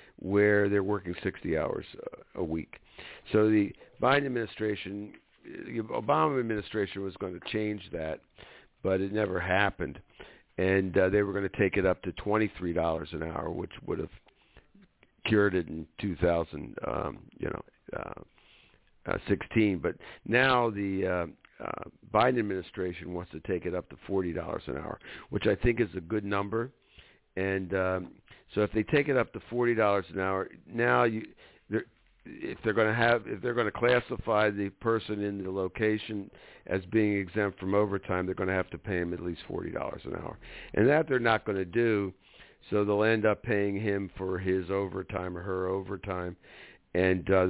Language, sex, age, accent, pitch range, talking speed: English, male, 50-69, American, 90-105 Hz, 175 wpm